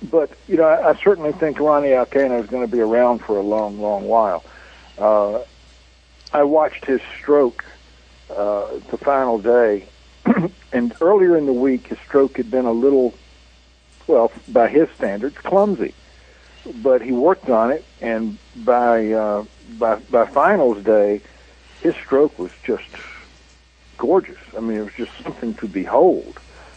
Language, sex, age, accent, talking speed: English, male, 60-79, American, 155 wpm